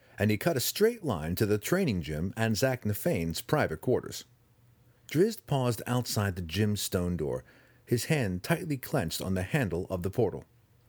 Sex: male